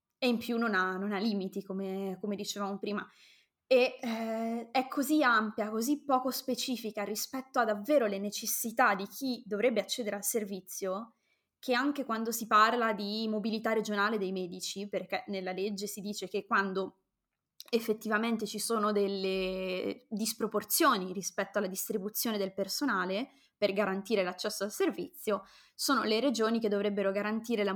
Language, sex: Italian, female